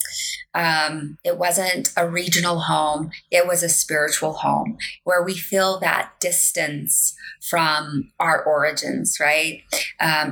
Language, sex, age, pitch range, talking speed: English, female, 20-39, 160-195 Hz, 120 wpm